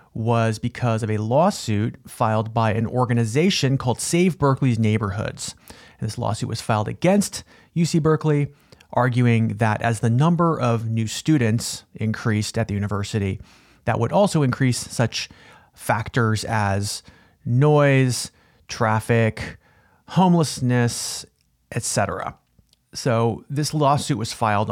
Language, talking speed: English, 120 wpm